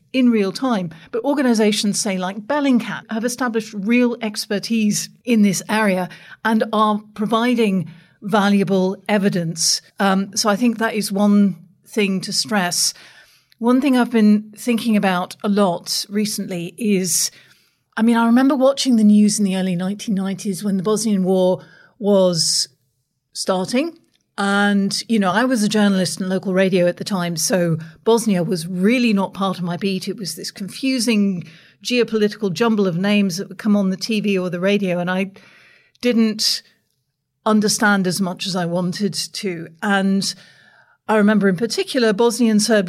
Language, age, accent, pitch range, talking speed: English, 40-59, British, 190-230 Hz, 160 wpm